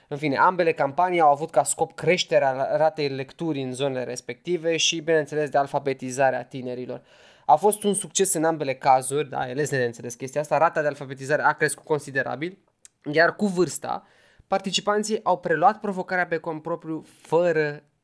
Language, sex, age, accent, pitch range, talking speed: Romanian, male, 20-39, native, 135-170 Hz, 165 wpm